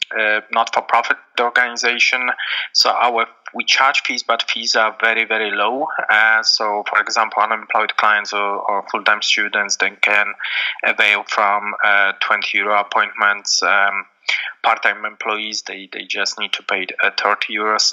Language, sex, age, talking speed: English, male, 20-39, 145 wpm